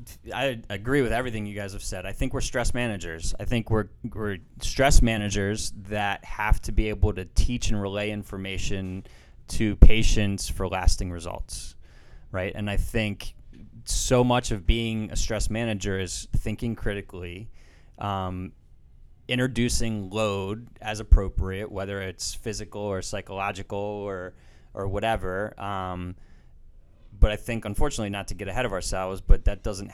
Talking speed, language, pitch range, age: 150 wpm, English, 90-110 Hz, 20-39